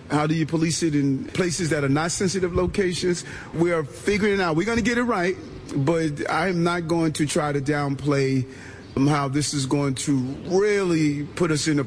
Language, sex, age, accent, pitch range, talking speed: English, male, 40-59, American, 140-175 Hz, 205 wpm